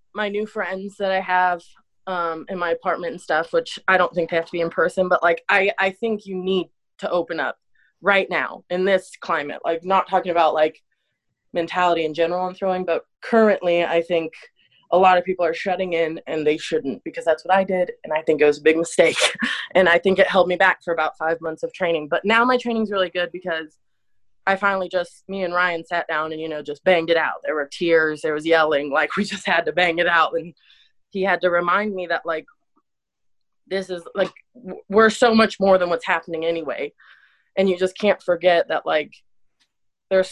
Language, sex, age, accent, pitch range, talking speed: English, female, 20-39, American, 165-195 Hz, 225 wpm